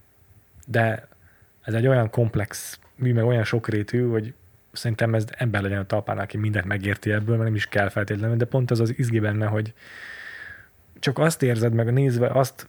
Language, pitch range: Hungarian, 105-125 Hz